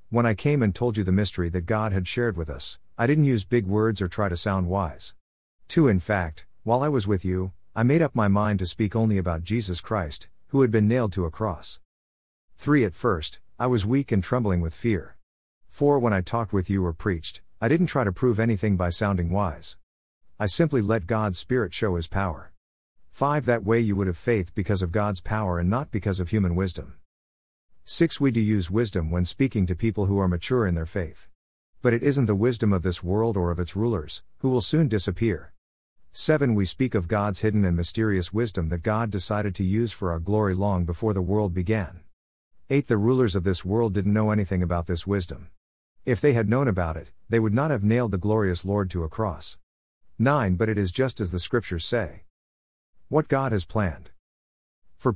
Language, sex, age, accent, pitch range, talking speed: English, male, 50-69, American, 90-115 Hz, 215 wpm